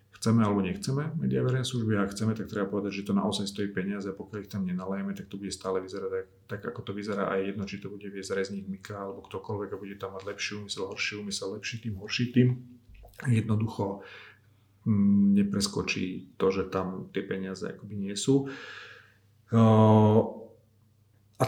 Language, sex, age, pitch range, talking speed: Slovak, male, 40-59, 100-110 Hz, 175 wpm